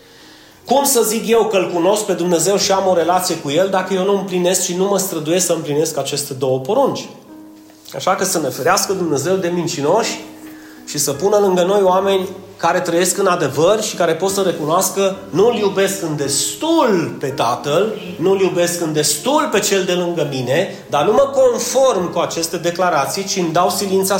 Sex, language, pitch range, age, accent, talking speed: male, Romanian, 155-205 Hz, 30-49, native, 190 wpm